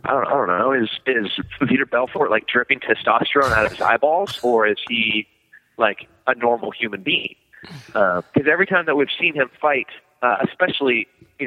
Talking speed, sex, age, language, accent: 190 wpm, male, 30-49, English, American